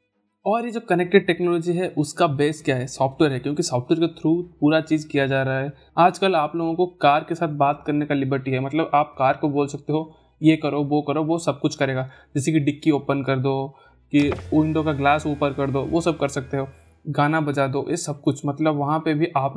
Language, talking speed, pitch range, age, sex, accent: Hindi, 240 wpm, 140-165 Hz, 20-39, male, native